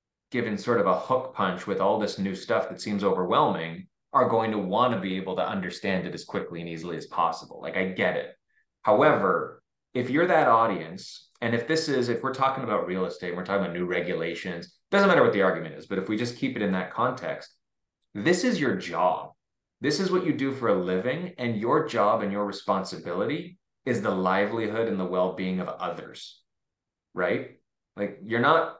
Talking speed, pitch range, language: 210 wpm, 95-125 Hz, English